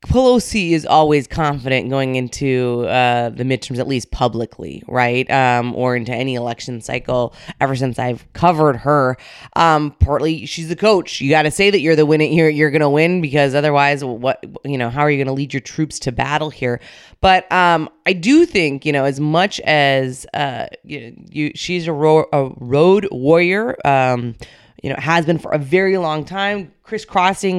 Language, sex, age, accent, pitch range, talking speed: English, female, 20-39, American, 140-175 Hz, 195 wpm